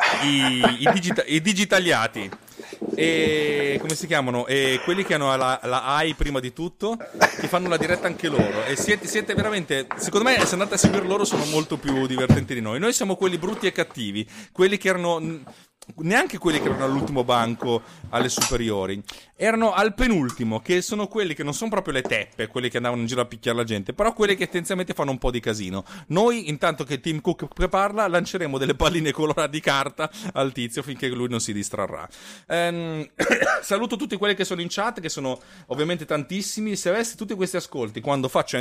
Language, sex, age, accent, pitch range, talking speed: Italian, male, 30-49, native, 130-185 Hz, 195 wpm